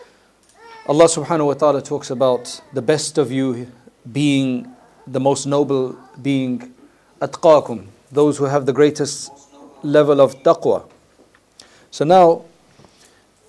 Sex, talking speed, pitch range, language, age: male, 115 wpm, 120-145 Hz, English, 40-59